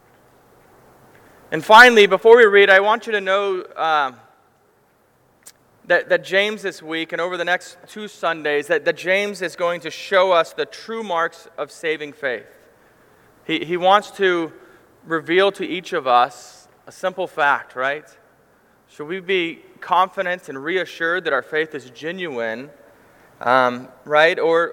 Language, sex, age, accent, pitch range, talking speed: English, male, 30-49, American, 160-195 Hz, 155 wpm